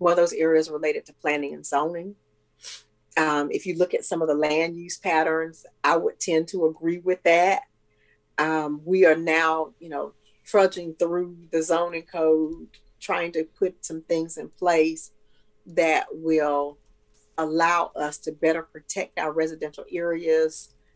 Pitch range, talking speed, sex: 155-180 Hz, 155 wpm, female